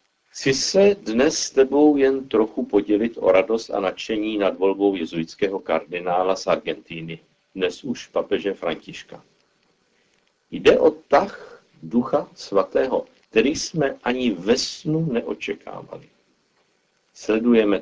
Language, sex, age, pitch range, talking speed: Czech, male, 50-69, 95-135 Hz, 115 wpm